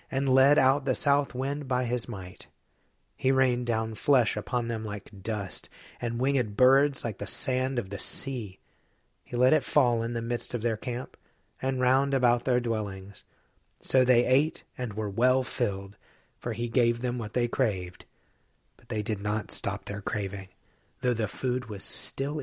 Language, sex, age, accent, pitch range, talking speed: English, male, 30-49, American, 110-135 Hz, 180 wpm